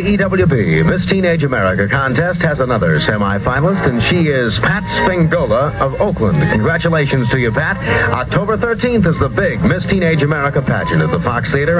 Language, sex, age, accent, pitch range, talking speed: English, male, 60-79, American, 110-165 Hz, 160 wpm